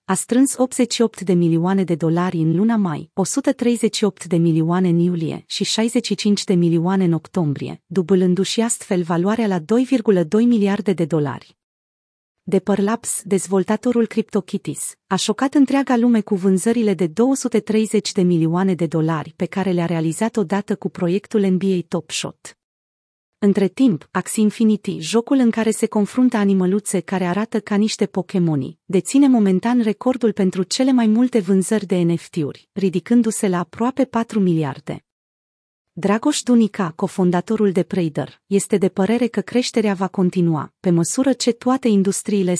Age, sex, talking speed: 30-49, female, 145 wpm